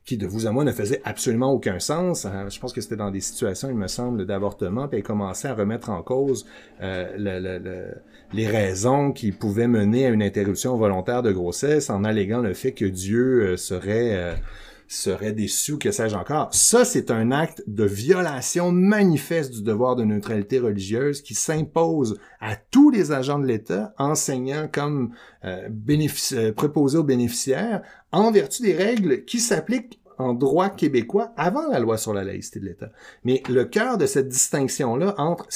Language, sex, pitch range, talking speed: French, male, 105-170 Hz, 175 wpm